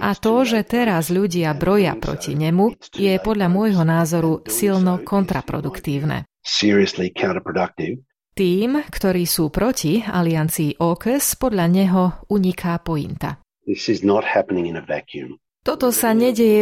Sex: female